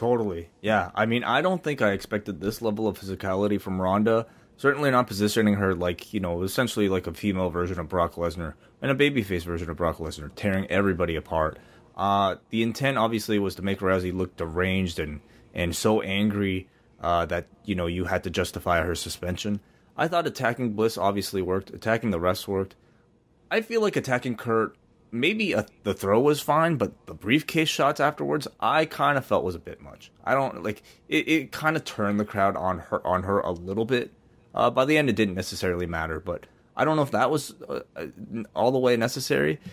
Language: English